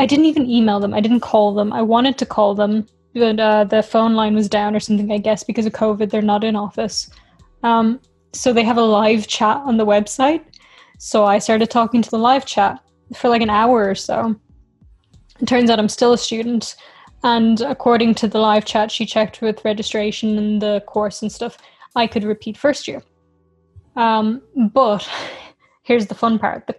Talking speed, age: 200 wpm, 10-29